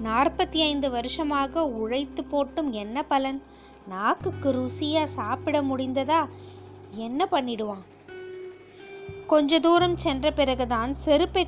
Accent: native